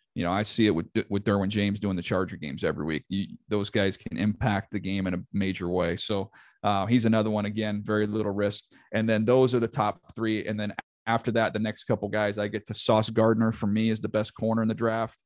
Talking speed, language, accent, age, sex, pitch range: 250 wpm, English, American, 40-59, male, 100-125 Hz